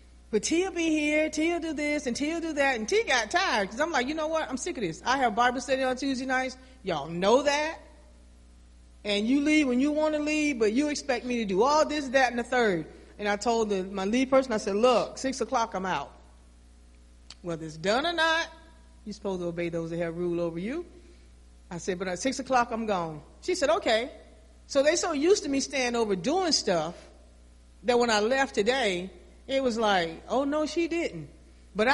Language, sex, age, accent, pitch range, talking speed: English, female, 40-59, American, 190-310 Hz, 225 wpm